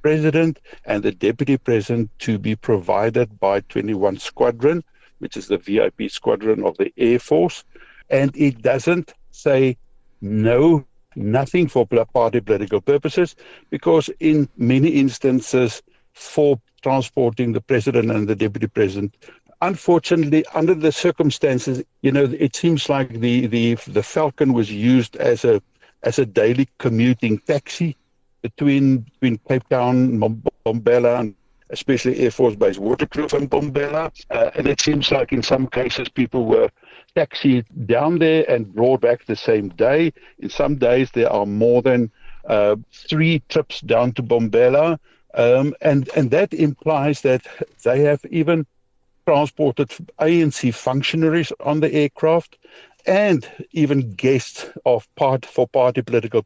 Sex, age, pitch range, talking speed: male, 60-79, 120-155 Hz, 140 wpm